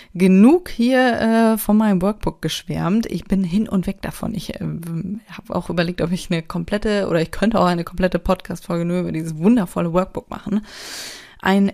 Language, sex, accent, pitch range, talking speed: German, female, German, 175-215 Hz, 185 wpm